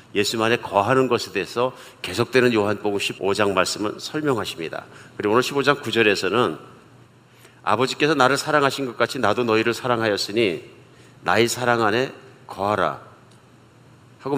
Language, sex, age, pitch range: Korean, male, 50-69, 110-140 Hz